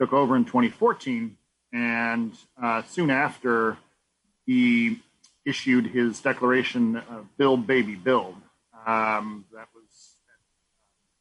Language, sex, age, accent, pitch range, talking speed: English, male, 40-59, American, 115-135 Hz, 105 wpm